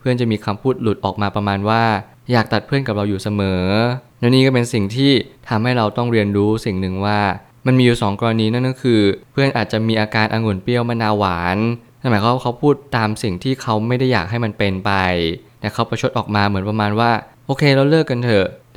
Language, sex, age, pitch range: Thai, male, 20-39, 105-120 Hz